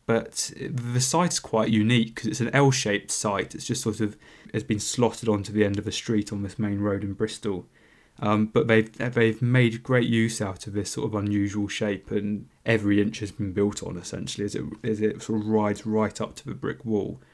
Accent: British